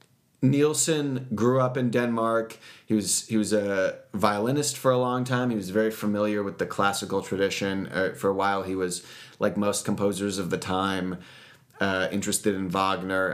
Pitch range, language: 95-110 Hz, English